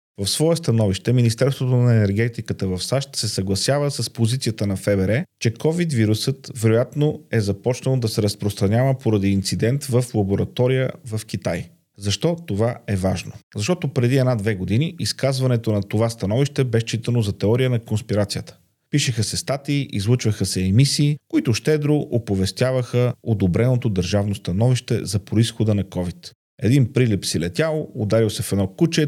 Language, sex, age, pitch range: Bulgarian, male, 40-59, 105-135 Hz